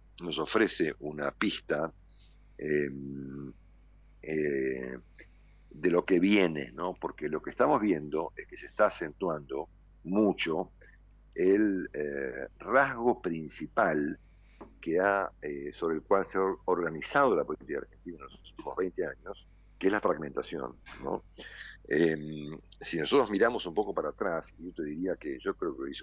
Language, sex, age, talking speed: Spanish, male, 50-69, 150 wpm